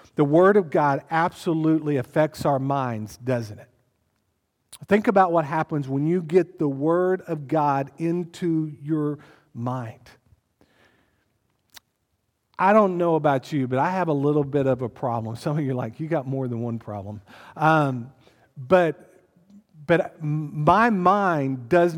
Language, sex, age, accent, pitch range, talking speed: English, male, 50-69, American, 140-185 Hz, 150 wpm